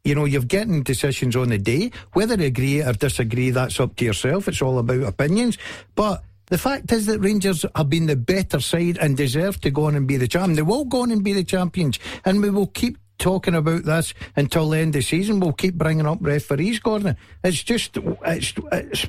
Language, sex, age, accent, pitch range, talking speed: English, male, 60-79, British, 135-185 Hz, 225 wpm